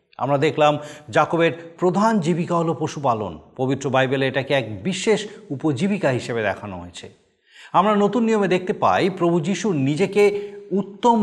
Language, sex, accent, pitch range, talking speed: Bengali, male, native, 120-160 Hz, 135 wpm